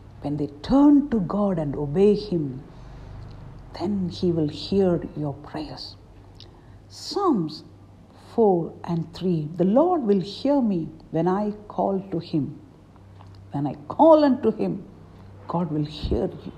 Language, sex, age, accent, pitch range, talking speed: English, female, 60-79, Indian, 145-235 Hz, 130 wpm